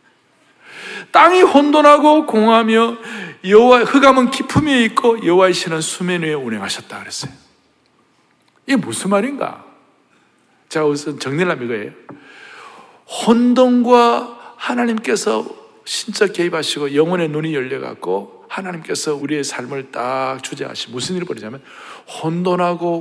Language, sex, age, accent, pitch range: Korean, male, 60-79, native, 150-245 Hz